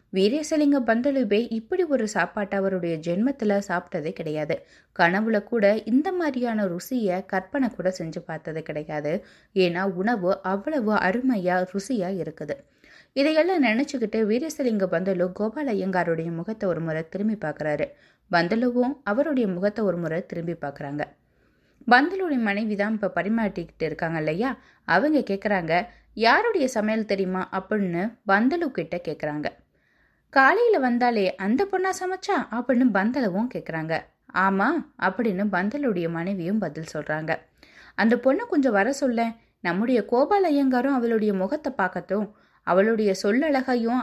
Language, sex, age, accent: Tamil, female, 20-39, native